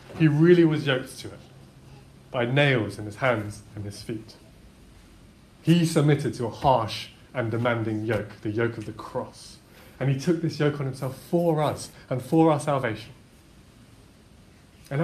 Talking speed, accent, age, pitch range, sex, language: 165 wpm, British, 30-49, 110-150 Hz, male, English